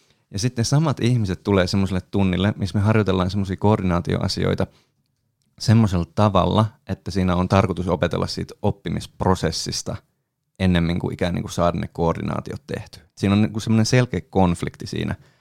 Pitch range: 90-115 Hz